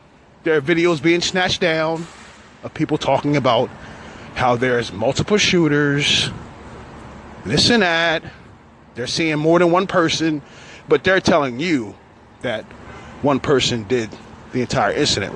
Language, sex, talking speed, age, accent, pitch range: English, male, 135 wpm, 30-49, American, 130-175 Hz